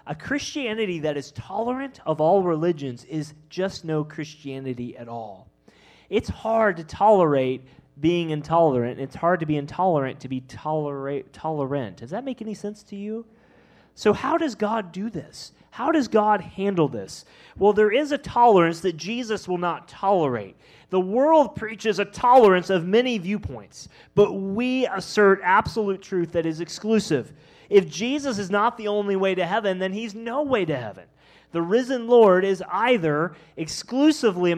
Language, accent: English, American